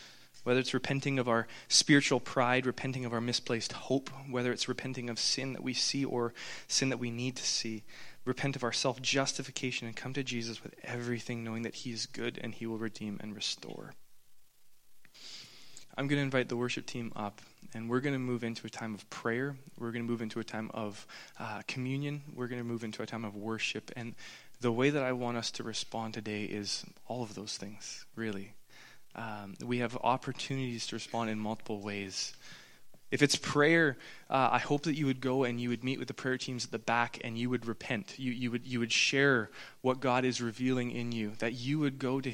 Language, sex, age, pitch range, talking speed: English, male, 20-39, 115-130 Hz, 215 wpm